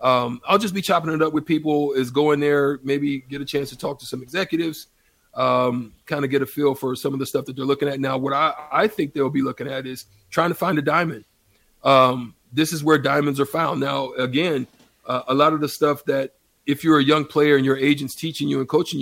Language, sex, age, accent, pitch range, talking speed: English, male, 40-59, American, 135-155 Hz, 245 wpm